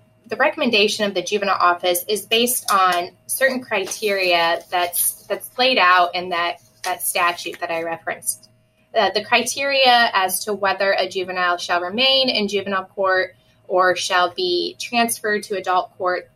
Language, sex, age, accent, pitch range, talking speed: English, female, 20-39, American, 175-210 Hz, 155 wpm